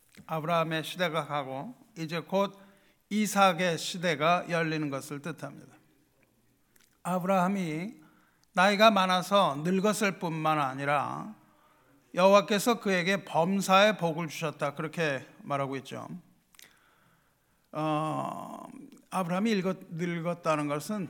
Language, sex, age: Korean, male, 50-69